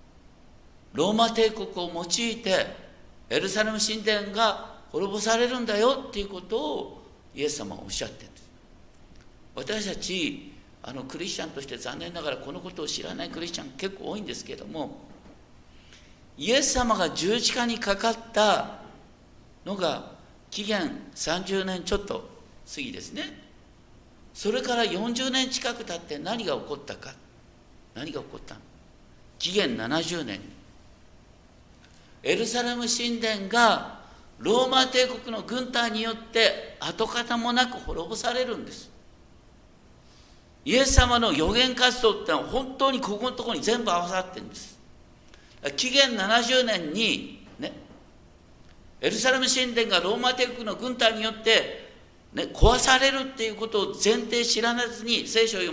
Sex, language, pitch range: male, Japanese, 205-250 Hz